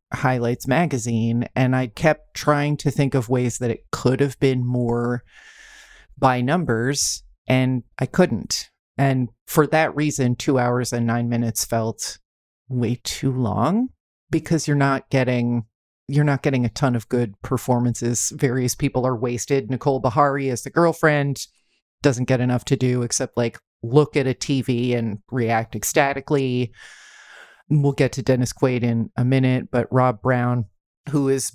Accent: American